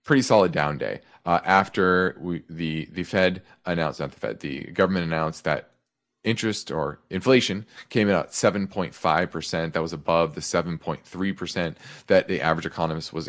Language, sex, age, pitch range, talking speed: English, male, 30-49, 80-100 Hz, 180 wpm